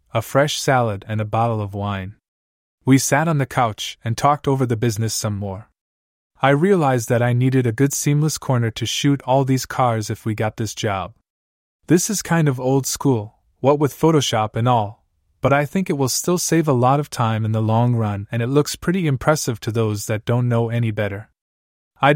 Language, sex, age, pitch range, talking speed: English, male, 20-39, 105-140 Hz, 210 wpm